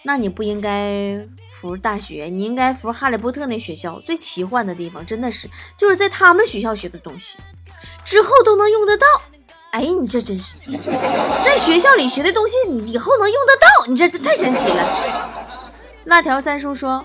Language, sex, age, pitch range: Chinese, female, 20-39, 205-310 Hz